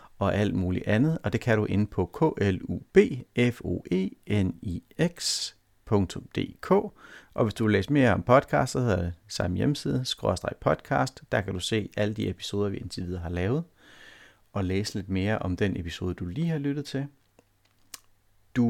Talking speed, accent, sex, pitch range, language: 165 wpm, native, male, 100-160 Hz, Danish